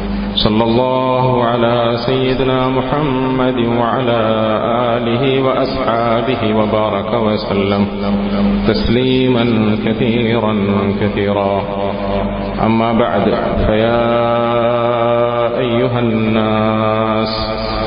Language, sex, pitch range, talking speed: Malayalam, male, 100-120 Hz, 60 wpm